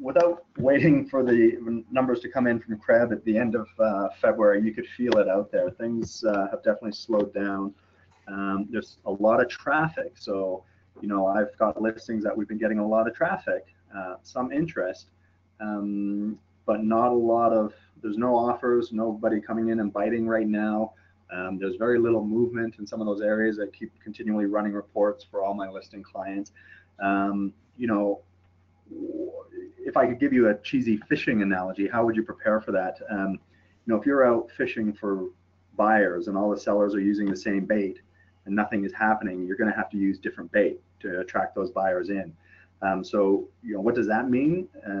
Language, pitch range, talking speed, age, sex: English, 95-115 Hz, 195 wpm, 30-49, male